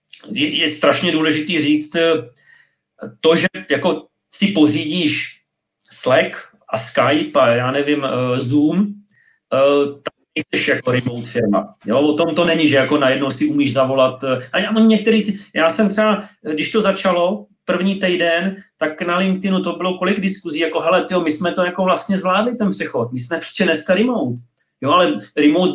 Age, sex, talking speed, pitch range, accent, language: 40-59, male, 165 wpm, 145-185 Hz, native, Czech